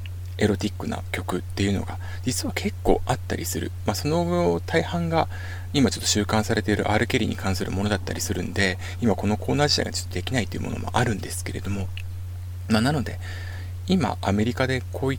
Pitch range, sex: 90-110 Hz, male